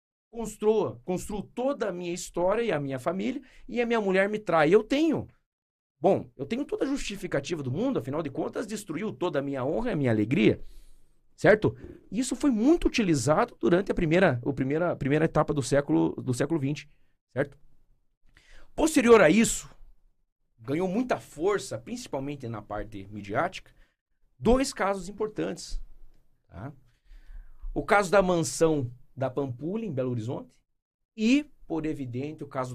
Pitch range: 135-215 Hz